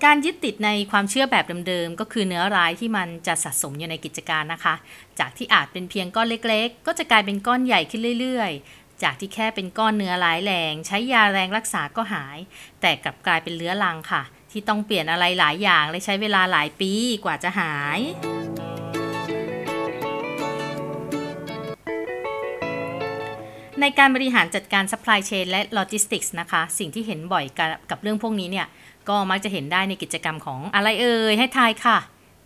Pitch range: 165-215 Hz